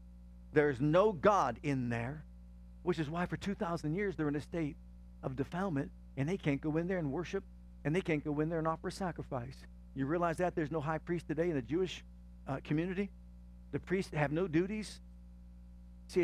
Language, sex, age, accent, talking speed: English, male, 50-69, American, 195 wpm